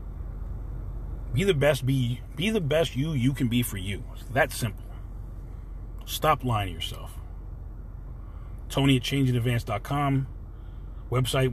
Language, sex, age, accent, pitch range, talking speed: English, male, 30-49, American, 105-125 Hz, 125 wpm